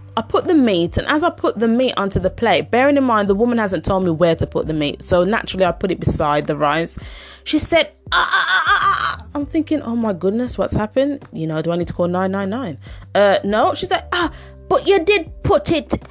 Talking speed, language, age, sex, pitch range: 230 wpm, English, 20-39, female, 175-275 Hz